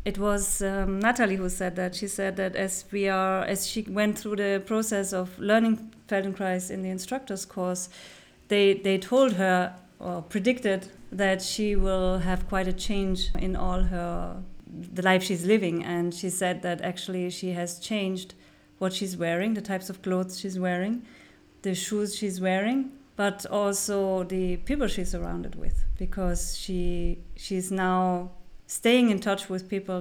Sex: female